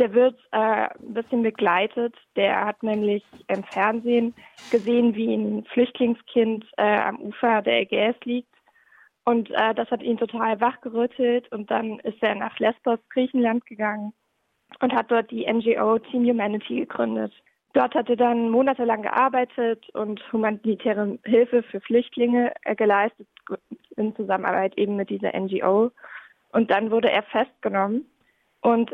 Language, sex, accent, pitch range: German, female, German, 220-245 Hz